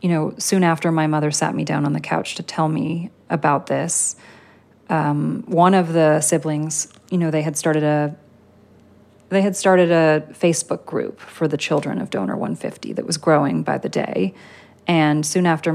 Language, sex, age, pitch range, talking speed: English, female, 30-49, 150-170 Hz, 185 wpm